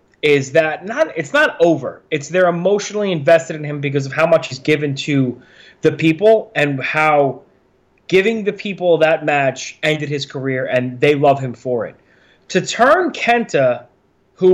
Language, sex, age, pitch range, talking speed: English, male, 20-39, 155-220 Hz, 170 wpm